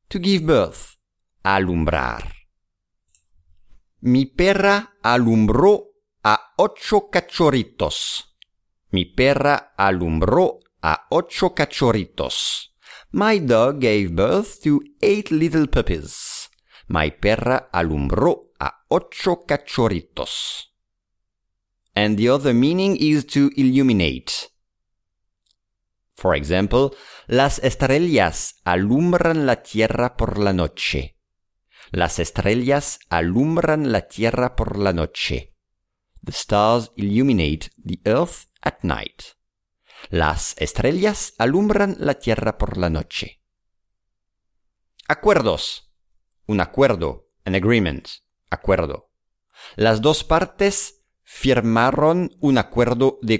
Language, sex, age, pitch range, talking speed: English, male, 50-69, 90-145 Hz, 95 wpm